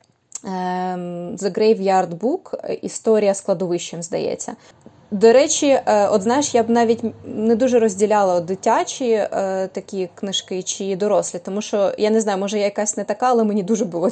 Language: Ukrainian